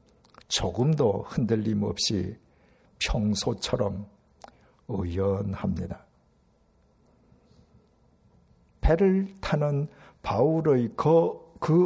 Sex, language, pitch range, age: male, Korean, 105-150 Hz, 60-79